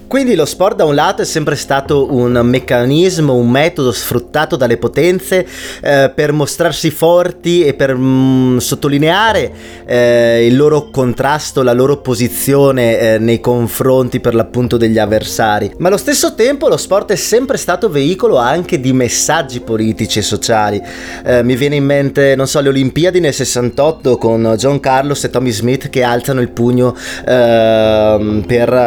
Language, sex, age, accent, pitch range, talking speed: Italian, male, 20-39, native, 120-155 Hz, 160 wpm